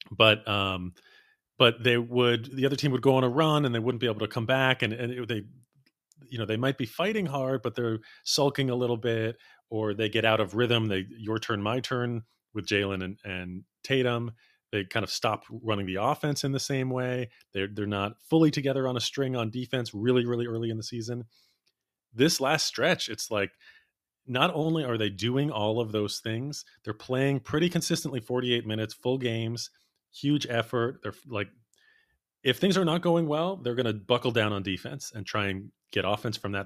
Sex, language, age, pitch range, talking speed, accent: male, English, 30-49, 105-130 Hz, 205 wpm, American